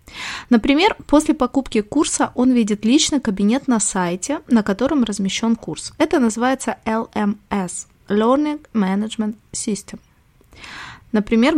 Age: 20-39